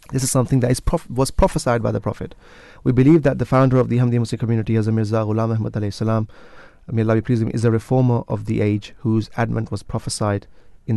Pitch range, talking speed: 105-120 Hz, 210 wpm